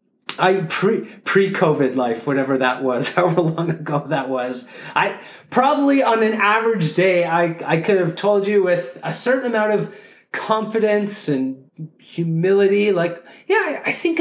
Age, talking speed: 30-49, 155 wpm